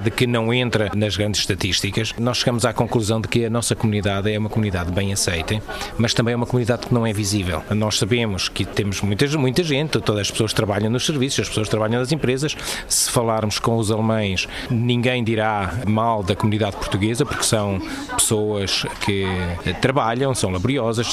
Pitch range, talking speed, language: 110-135 Hz, 185 wpm, Portuguese